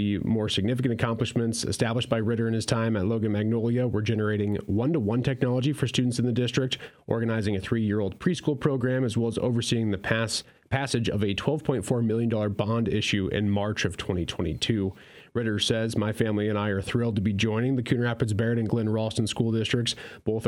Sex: male